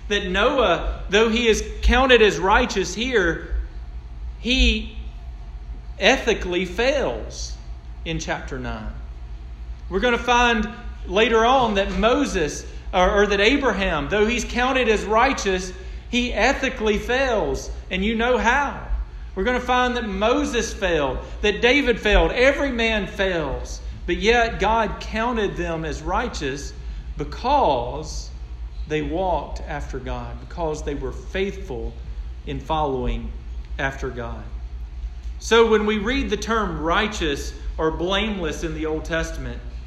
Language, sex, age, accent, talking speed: English, male, 40-59, American, 125 wpm